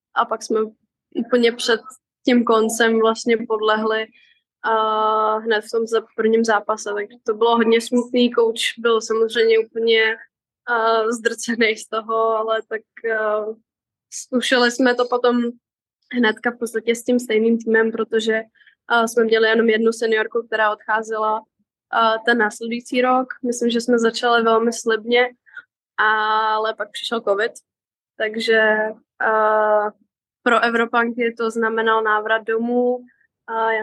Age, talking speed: 20-39, 135 wpm